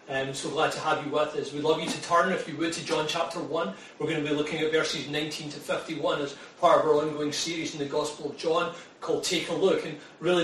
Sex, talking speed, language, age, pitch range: male, 270 wpm, English, 30-49, 165-195 Hz